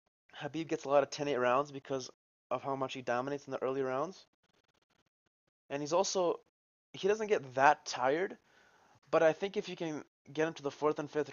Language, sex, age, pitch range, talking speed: English, male, 20-39, 125-155 Hz, 205 wpm